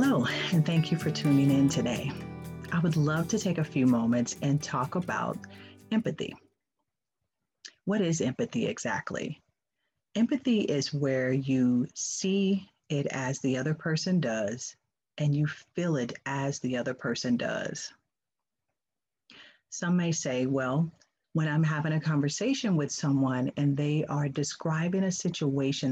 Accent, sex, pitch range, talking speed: American, female, 135-165 Hz, 140 wpm